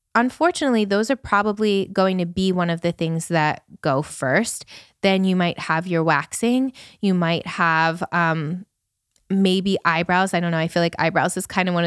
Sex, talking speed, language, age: female, 185 wpm, English, 20-39